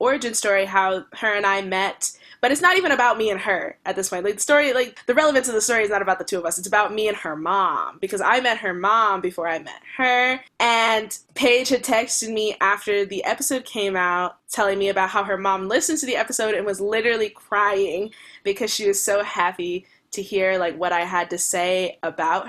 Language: English